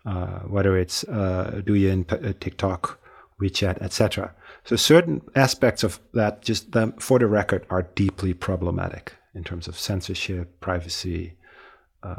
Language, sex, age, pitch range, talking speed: English, male, 40-59, 90-110 Hz, 140 wpm